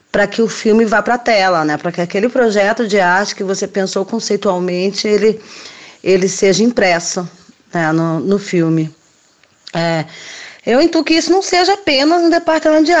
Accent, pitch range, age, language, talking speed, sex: Brazilian, 190-245 Hz, 20-39, Portuguese, 175 wpm, female